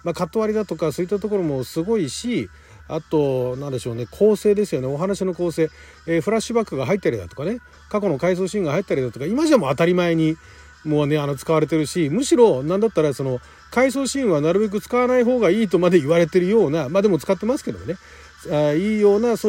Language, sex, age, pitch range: Japanese, male, 40-59, 130-200 Hz